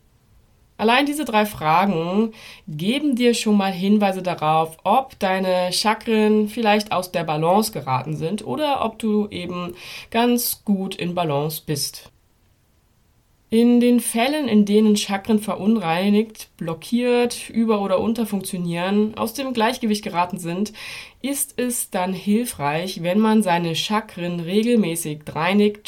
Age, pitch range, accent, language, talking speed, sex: 20-39, 175-220 Hz, German, German, 125 wpm, female